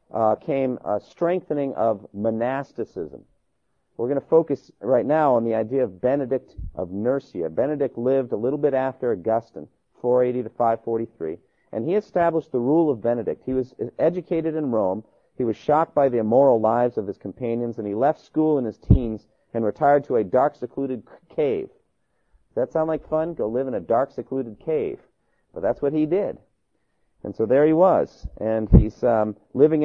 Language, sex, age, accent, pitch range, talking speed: English, male, 40-59, American, 110-150 Hz, 185 wpm